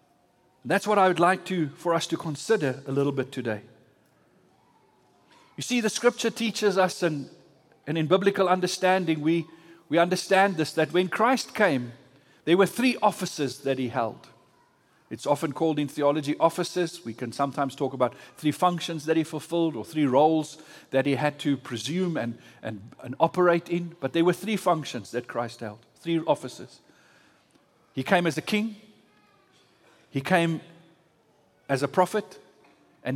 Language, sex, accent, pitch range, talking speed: English, male, South African, 140-200 Hz, 165 wpm